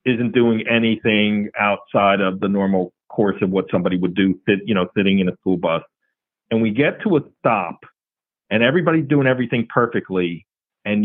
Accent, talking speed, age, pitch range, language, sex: American, 180 wpm, 40-59, 100-125 Hz, English, male